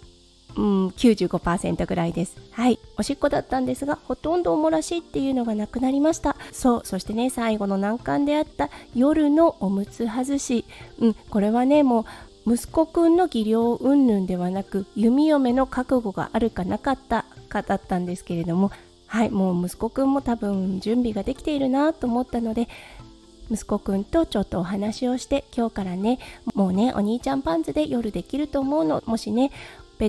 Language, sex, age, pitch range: Japanese, female, 20-39, 205-275 Hz